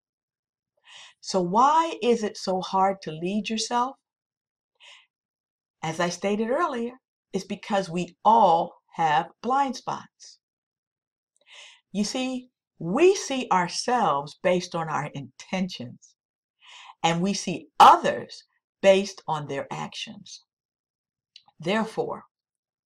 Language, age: English, 50-69